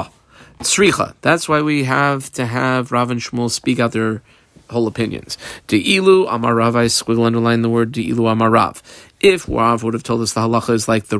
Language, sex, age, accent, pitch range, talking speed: English, male, 40-59, American, 115-160 Hz, 170 wpm